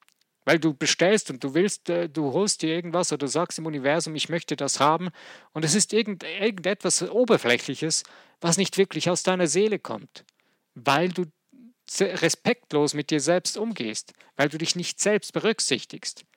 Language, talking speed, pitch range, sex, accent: German, 160 wpm, 150-190 Hz, male, German